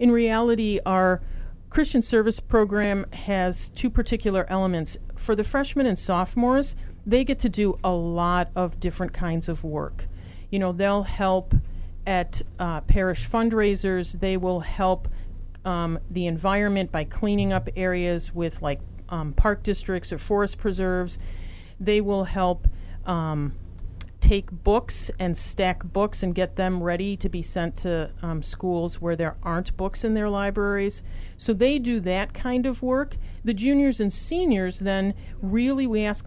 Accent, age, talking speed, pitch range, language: American, 40-59, 155 wpm, 175-210 Hz, English